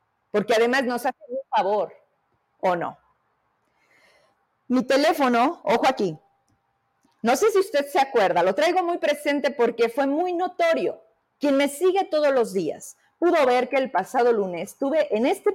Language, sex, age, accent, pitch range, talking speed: Spanish, female, 40-59, Mexican, 215-275 Hz, 160 wpm